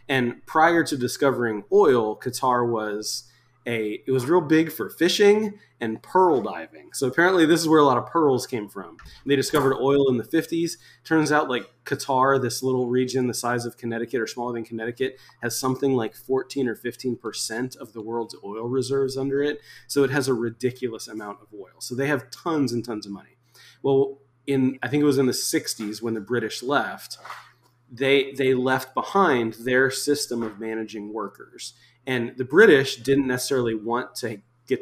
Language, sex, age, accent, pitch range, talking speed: English, male, 20-39, American, 115-135 Hz, 190 wpm